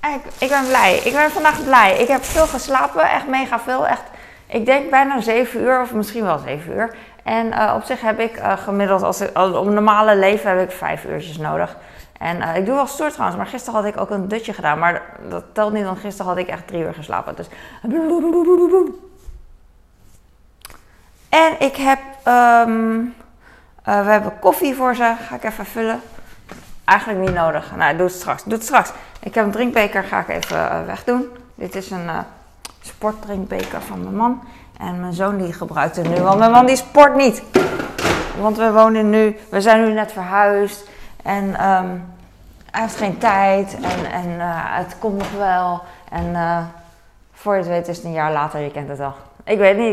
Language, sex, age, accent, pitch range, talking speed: Dutch, female, 20-39, Dutch, 180-240 Hz, 200 wpm